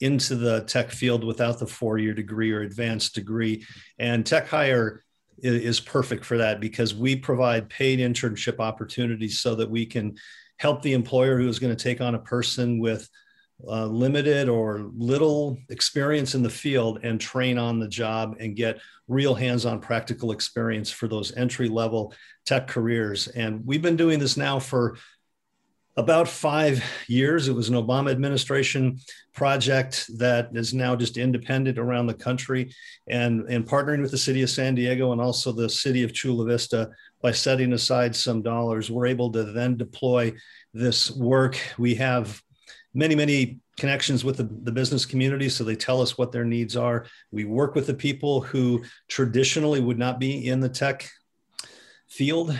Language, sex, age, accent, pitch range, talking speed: English, male, 50-69, American, 115-130 Hz, 170 wpm